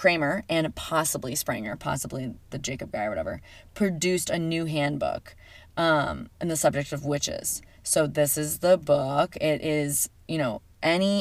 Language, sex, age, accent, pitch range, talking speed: English, female, 20-39, American, 145-175 Hz, 155 wpm